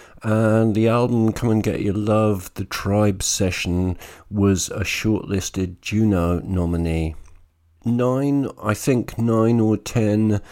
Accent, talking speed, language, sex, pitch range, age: British, 125 wpm, English, male, 90-110 Hz, 50-69